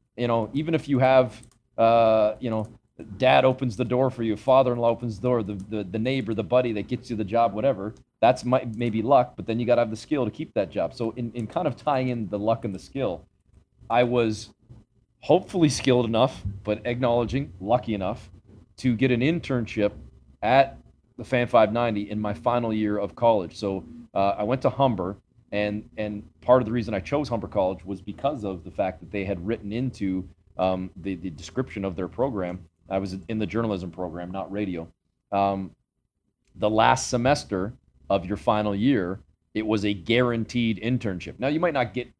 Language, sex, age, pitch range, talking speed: English, male, 30-49, 100-125 Hz, 200 wpm